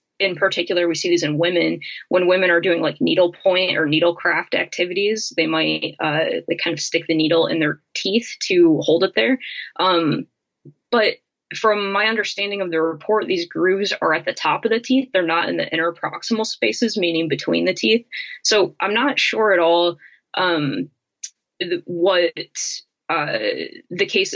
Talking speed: 170 wpm